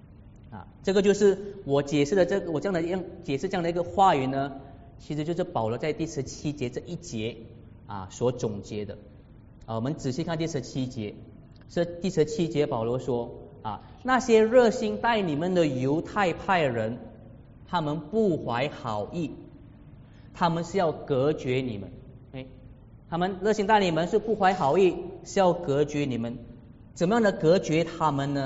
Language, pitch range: Chinese, 120-170 Hz